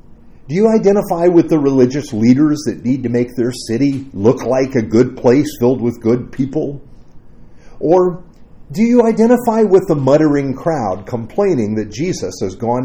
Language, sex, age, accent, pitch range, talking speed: English, male, 50-69, American, 105-150 Hz, 165 wpm